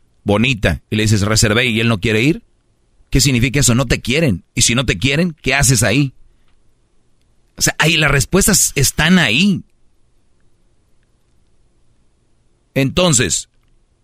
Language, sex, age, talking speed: Spanish, male, 40-59, 135 wpm